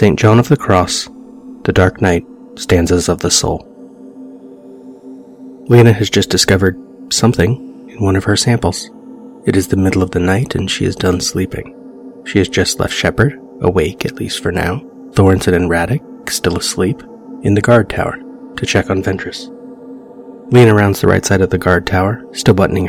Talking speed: 180 wpm